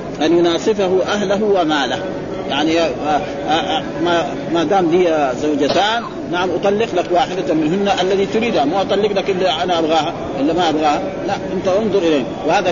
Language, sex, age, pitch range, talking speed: Arabic, male, 40-59, 170-205 Hz, 155 wpm